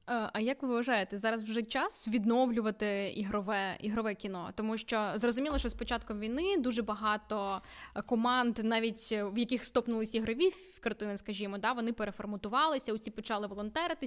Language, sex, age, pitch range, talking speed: Ukrainian, female, 10-29, 210-250 Hz, 150 wpm